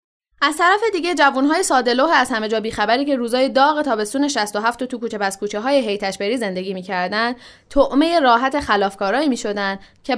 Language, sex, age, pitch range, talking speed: Persian, female, 10-29, 195-275 Hz, 170 wpm